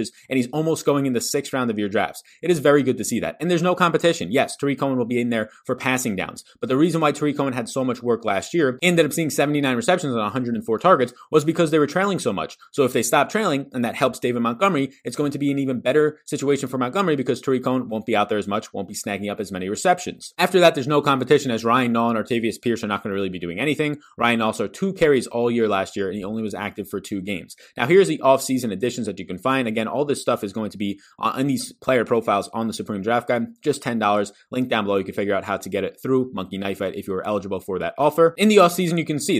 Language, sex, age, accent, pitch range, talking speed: English, male, 30-49, American, 105-145 Hz, 290 wpm